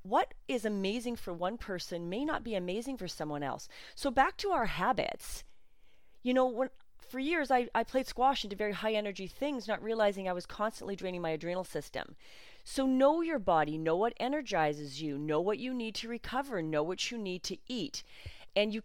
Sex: female